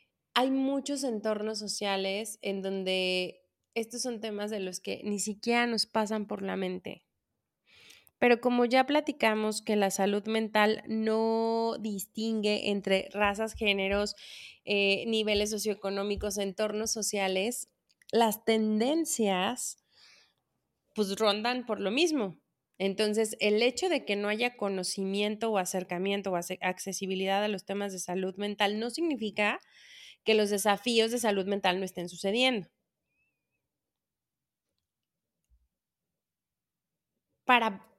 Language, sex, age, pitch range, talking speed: Spanish, female, 20-39, 195-225 Hz, 115 wpm